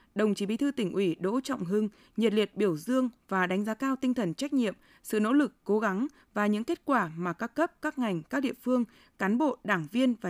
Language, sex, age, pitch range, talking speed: Vietnamese, female, 20-39, 195-255 Hz, 250 wpm